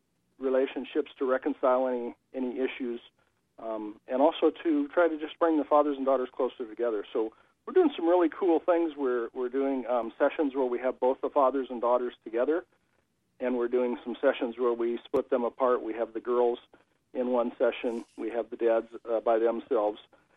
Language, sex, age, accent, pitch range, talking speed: English, male, 50-69, American, 120-140 Hz, 190 wpm